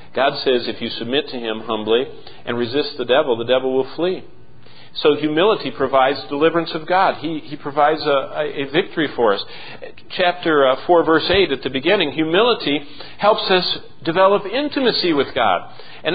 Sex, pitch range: male, 130-185 Hz